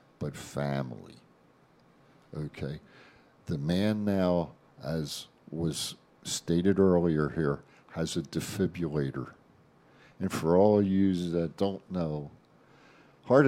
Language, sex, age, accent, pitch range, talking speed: English, male, 50-69, American, 75-90 Hz, 100 wpm